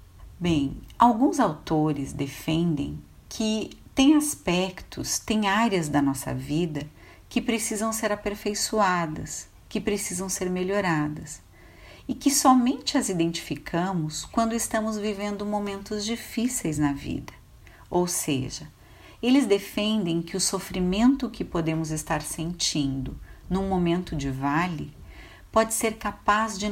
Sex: female